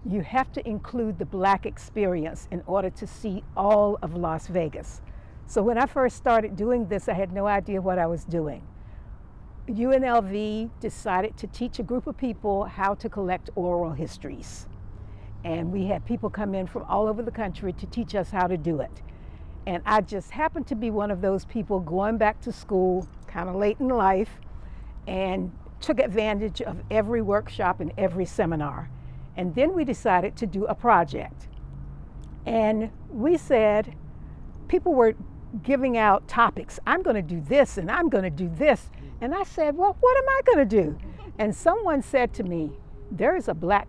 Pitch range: 180-235 Hz